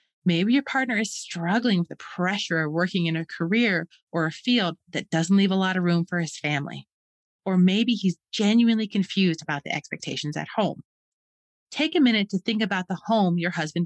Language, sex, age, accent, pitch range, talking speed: English, female, 30-49, American, 170-230 Hz, 200 wpm